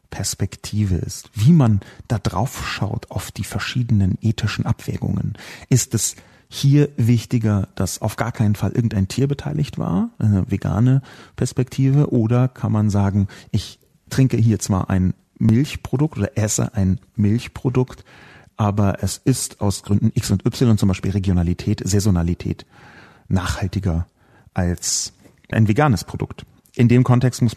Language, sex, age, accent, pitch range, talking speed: German, male, 40-59, German, 100-130 Hz, 135 wpm